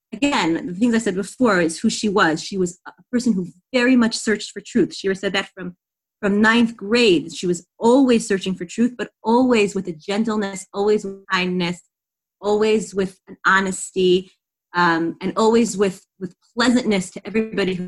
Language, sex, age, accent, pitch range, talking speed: English, female, 30-49, American, 190-240 Hz, 180 wpm